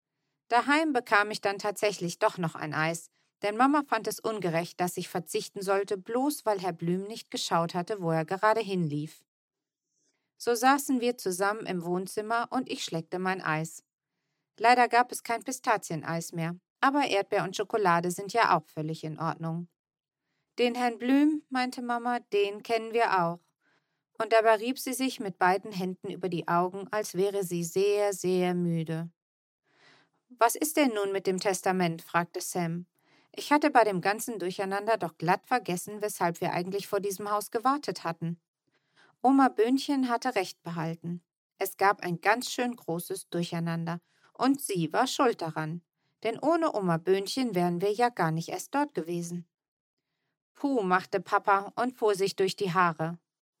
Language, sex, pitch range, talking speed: German, female, 170-230 Hz, 165 wpm